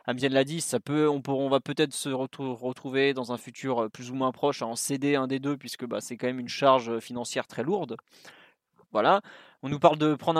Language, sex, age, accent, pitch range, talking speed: French, male, 20-39, French, 130-155 Hz, 235 wpm